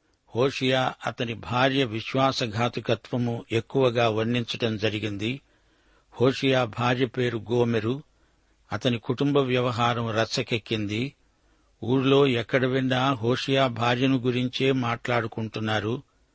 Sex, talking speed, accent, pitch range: male, 80 wpm, native, 115-130 Hz